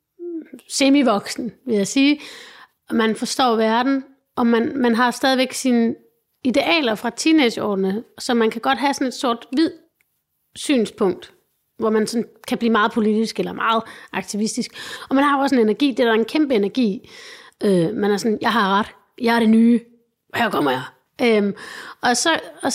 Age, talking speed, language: 30-49, 175 wpm, Danish